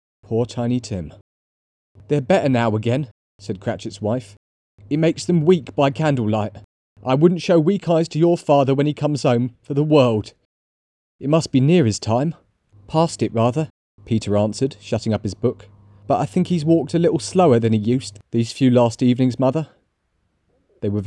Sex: male